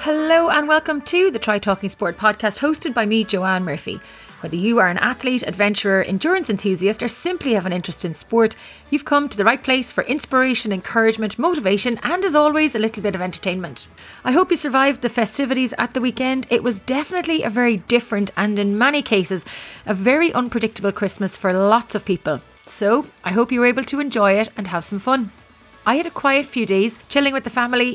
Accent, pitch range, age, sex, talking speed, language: Irish, 195-260 Hz, 30-49, female, 210 wpm, English